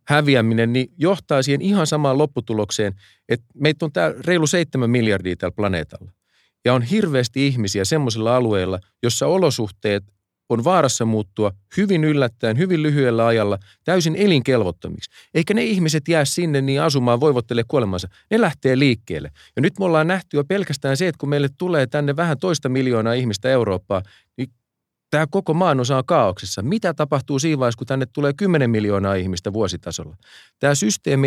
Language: Finnish